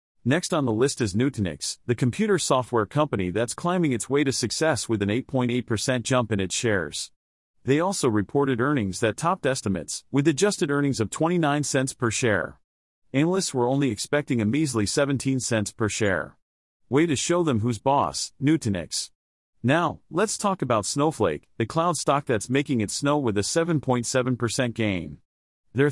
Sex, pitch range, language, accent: male, 110-145 Hz, English, American